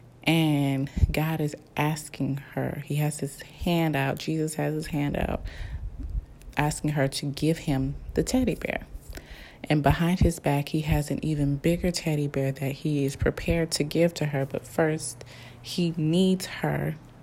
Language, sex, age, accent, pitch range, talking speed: English, female, 20-39, American, 135-160 Hz, 165 wpm